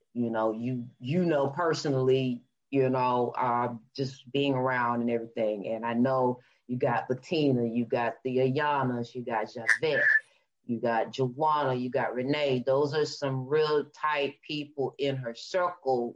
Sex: female